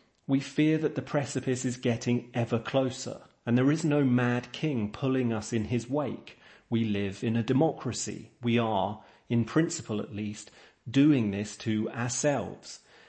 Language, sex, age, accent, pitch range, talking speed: English, male, 40-59, British, 110-135 Hz, 160 wpm